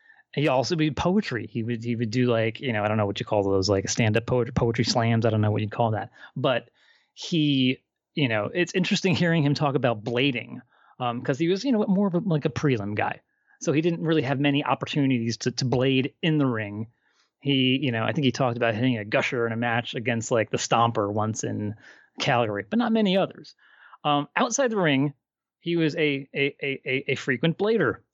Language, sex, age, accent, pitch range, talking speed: English, male, 30-49, American, 115-160 Hz, 225 wpm